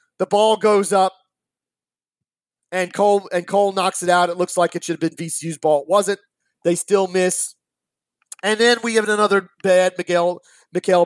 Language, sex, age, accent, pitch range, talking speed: English, male, 30-49, American, 165-200 Hz, 175 wpm